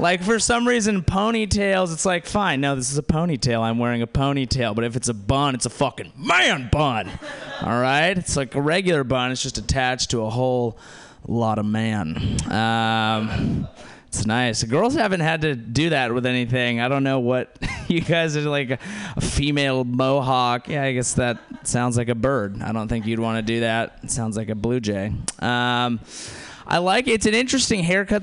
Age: 20-39